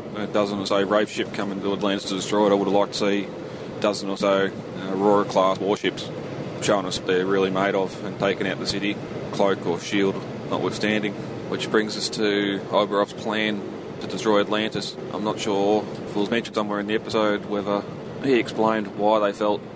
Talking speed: 195 wpm